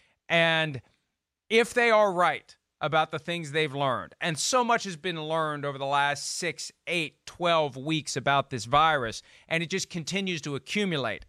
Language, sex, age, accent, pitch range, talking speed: English, male, 40-59, American, 145-190 Hz, 170 wpm